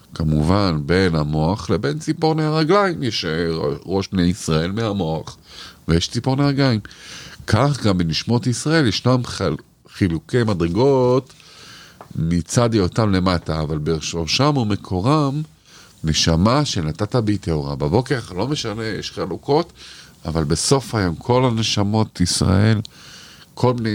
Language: Hebrew